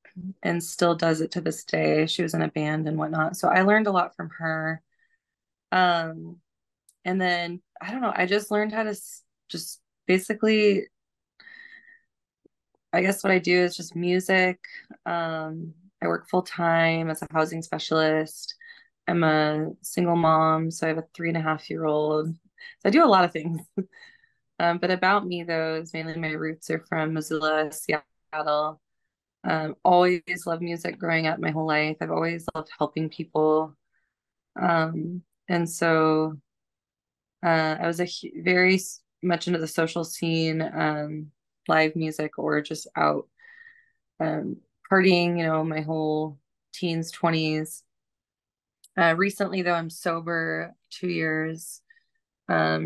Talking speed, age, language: 150 wpm, 20-39, English